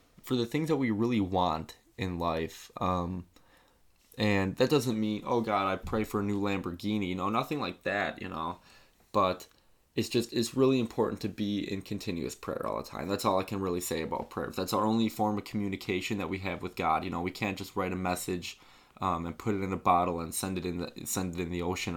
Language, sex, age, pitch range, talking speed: English, male, 20-39, 90-120 Hz, 240 wpm